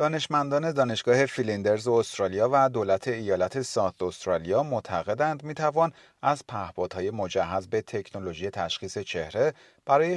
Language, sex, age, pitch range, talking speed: Persian, male, 30-49, 95-145 Hz, 110 wpm